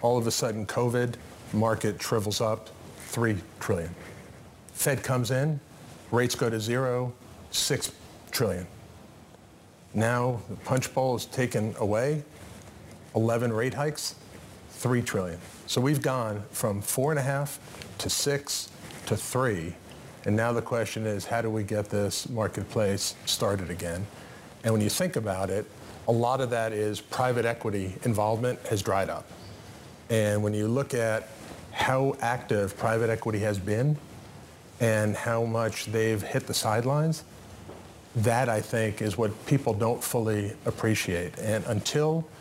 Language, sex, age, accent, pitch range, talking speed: English, male, 40-59, American, 105-125 Hz, 145 wpm